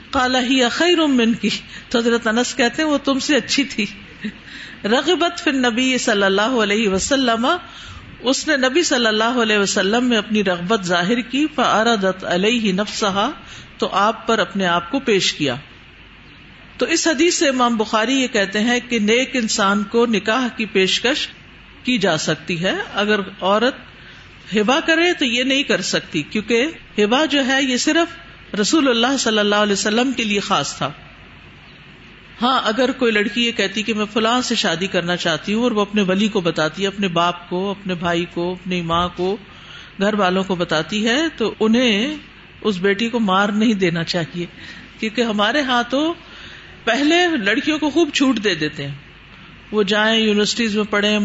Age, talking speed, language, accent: 50-69, 170 wpm, English, Indian